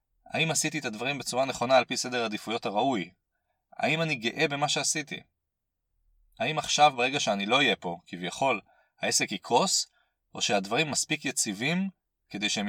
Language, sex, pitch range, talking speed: Hebrew, male, 100-150 Hz, 150 wpm